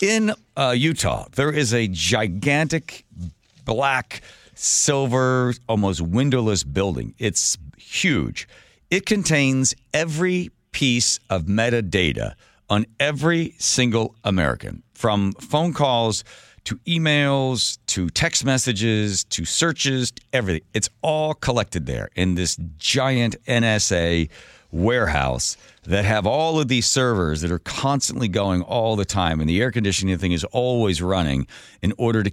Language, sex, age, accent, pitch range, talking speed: English, male, 50-69, American, 95-130 Hz, 130 wpm